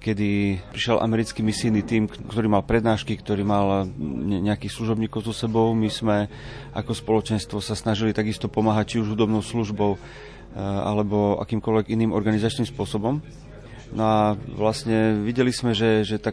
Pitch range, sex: 105-120 Hz, male